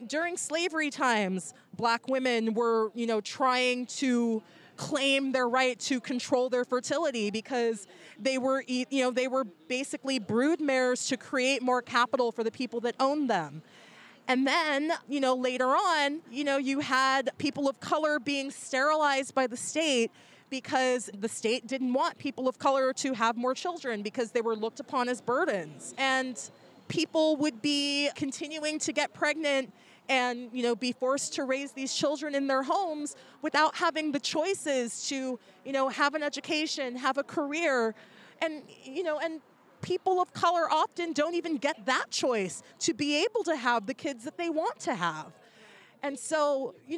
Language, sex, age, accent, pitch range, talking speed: English, female, 20-39, American, 250-305 Hz, 170 wpm